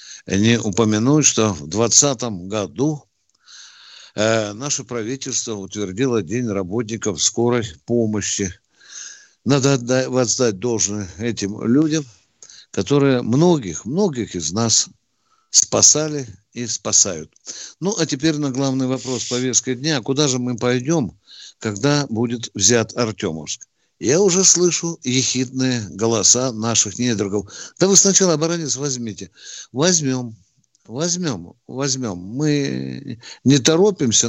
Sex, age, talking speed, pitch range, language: male, 60-79, 105 wpm, 115-145 Hz, Russian